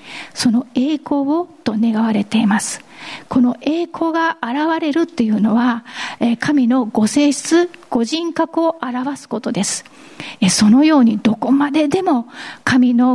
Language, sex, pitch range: Japanese, female, 225-290 Hz